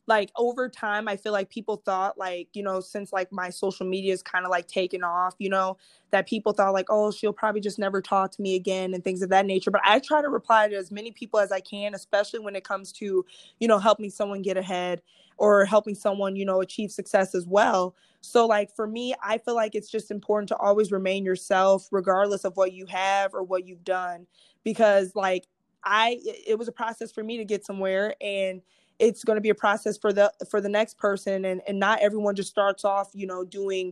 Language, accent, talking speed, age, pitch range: English, American, 235 wpm, 20-39, 185-210 Hz